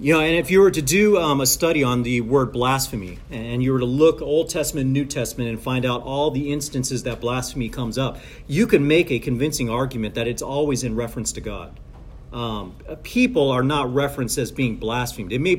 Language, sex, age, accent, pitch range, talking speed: English, male, 40-59, American, 125-165 Hz, 220 wpm